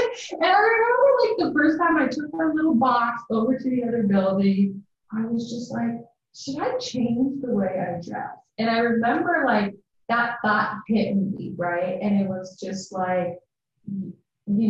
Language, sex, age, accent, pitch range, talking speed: English, female, 30-49, American, 180-250 Hz, 175 wpm